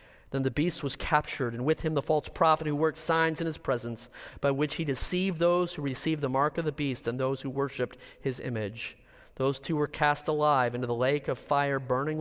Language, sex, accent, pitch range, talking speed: English, male, American, 120-160 Hz, 225 wpm